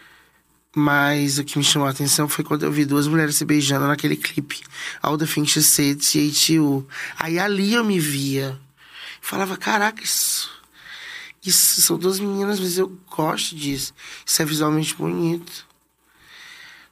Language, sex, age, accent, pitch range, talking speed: Portuguese, male, 20-39, Brazilian, 140-180 Hz, 145 wpm